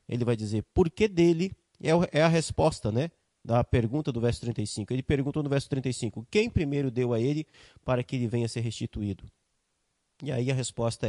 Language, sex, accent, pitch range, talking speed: Portuguese, male, Brazilian, 115-170 Hz, 190 wpm